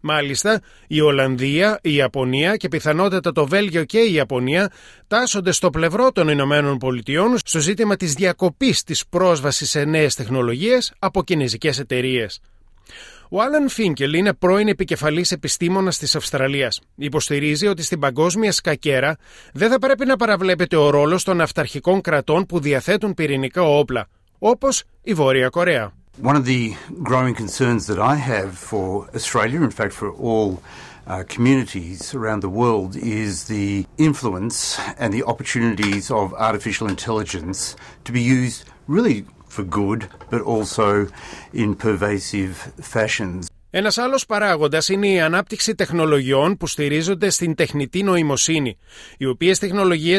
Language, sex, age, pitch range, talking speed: Greek, male, 30-49, 130-185 Hz, 140 wpm